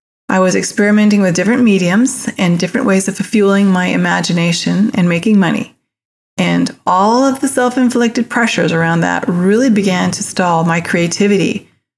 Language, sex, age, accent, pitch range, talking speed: English, female, 30-49, American, 180-225 Hz, 150 wpm